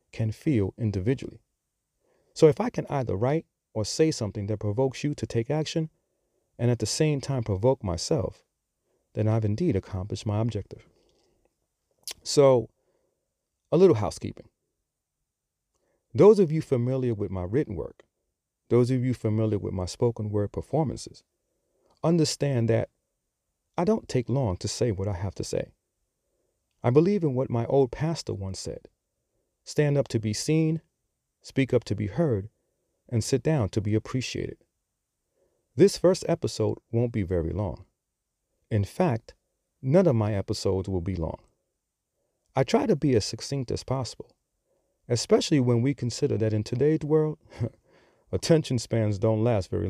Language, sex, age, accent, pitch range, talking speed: English, male, 40-59, American, 105-140 Hz, 155 wpm